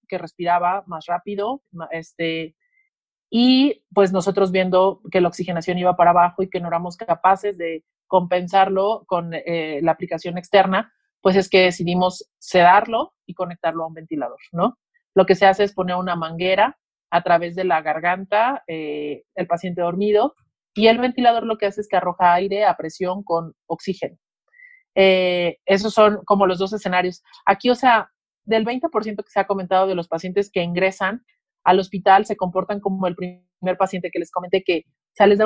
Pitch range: 175-205 Hz